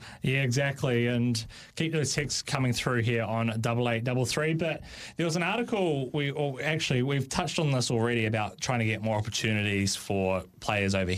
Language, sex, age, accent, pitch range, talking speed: English, male, 20-39, Australian, 105-125 Hz, 195 wpm